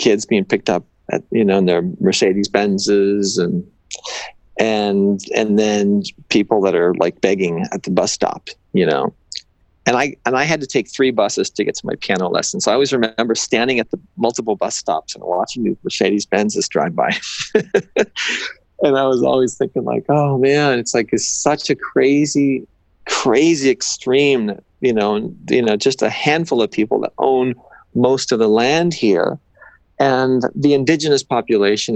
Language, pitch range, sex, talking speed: English, 105-140 Hz, male, 175 wpm